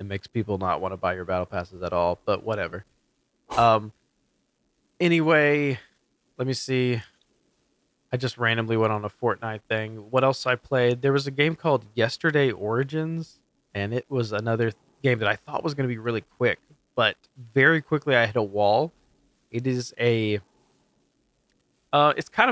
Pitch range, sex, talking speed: 105-130 Hz, male, 175 wpm